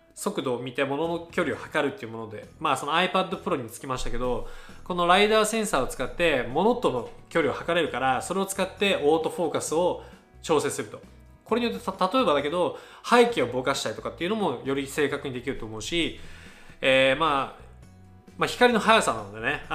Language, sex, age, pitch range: Japanese, male, 20-39, 130-190 Hz